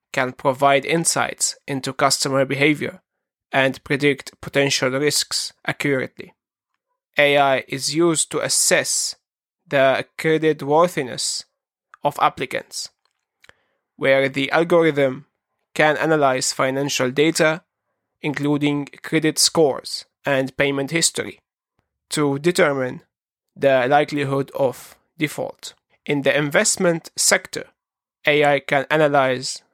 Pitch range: 135-155 Hz